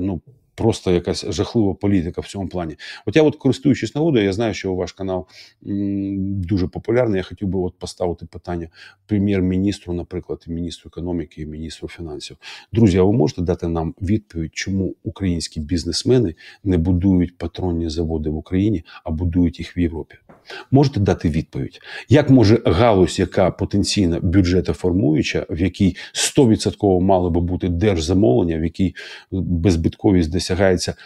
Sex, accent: male, native